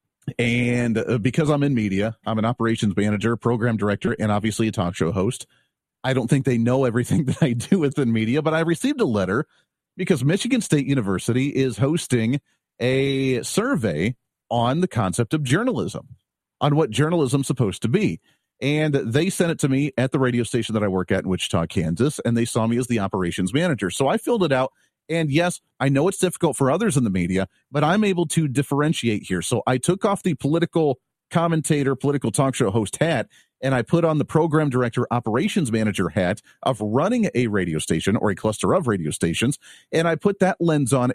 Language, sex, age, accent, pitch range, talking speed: English, male, 40-59, American, 115-160 Hz, 200 wpm